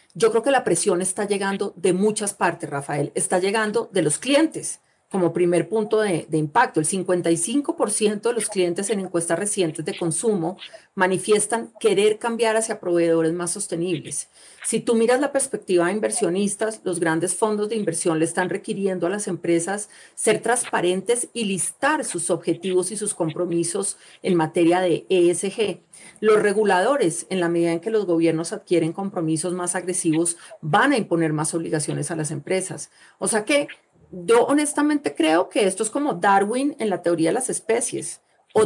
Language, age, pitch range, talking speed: Spanish, 40-59, 170-225 Hz, 170 wpm